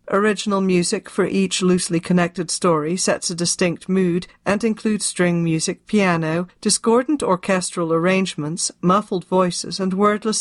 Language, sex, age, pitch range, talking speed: English, female, 40-59, 170-200 Hz, 135 wpm